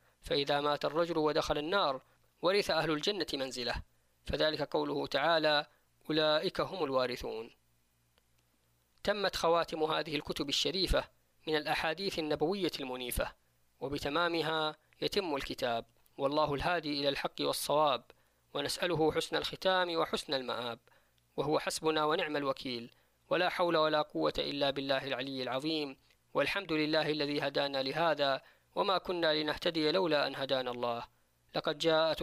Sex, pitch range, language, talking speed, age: female, 125-155 Hz, Arabic, 115 wpm, 20-39